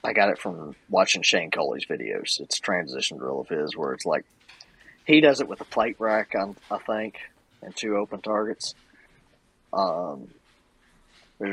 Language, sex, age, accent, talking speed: English, male, 30-49, American, 170 wpm